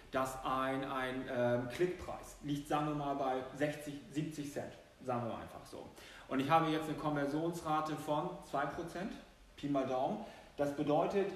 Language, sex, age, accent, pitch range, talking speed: German, male, 40-59, German, 130-160 Hz, 165 wpm